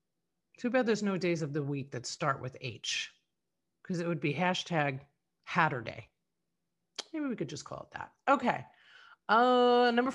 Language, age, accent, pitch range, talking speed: English, 40-59, American, 155-225 Hz, 165 wpm